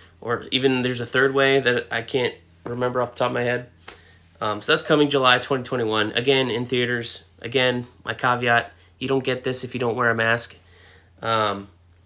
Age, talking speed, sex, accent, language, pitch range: 30-49, 195 wpm, male, American, English, 105-130 Hz